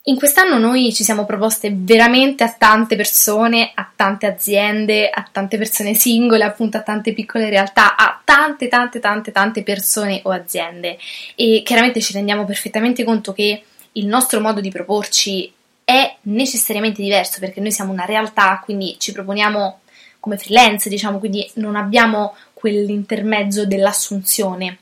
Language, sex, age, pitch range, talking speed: English, female, 20-39, 200-230 Hz, 150 wpm